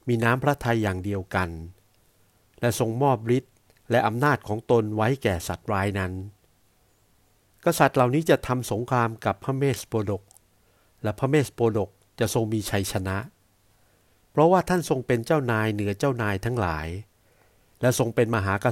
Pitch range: 100-120 Hz